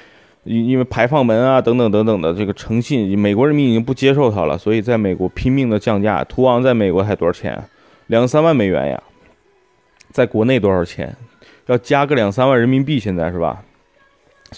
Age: 20-39